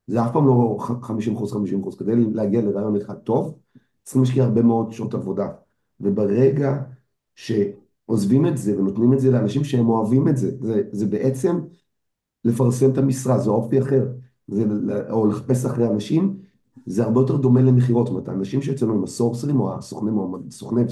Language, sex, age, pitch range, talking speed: Hebrew, male, 40-59, 110-130 Hz, 165 wpm